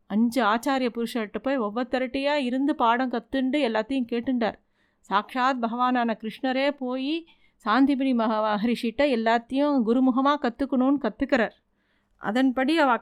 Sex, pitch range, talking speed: female, 220-265 Hz, 105 wpm